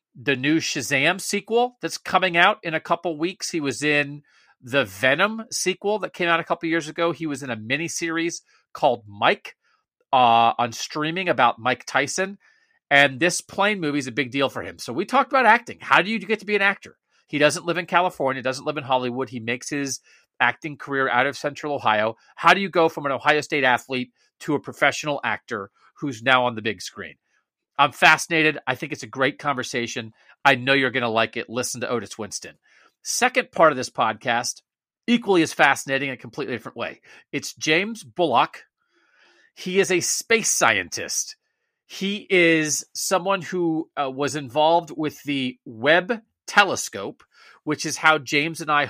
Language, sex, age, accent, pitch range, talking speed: English, male, 40-59, American, 135-180 Hz, 190 wpm